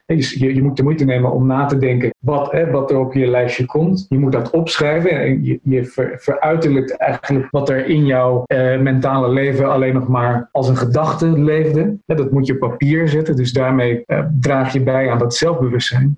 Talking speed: 205 wpm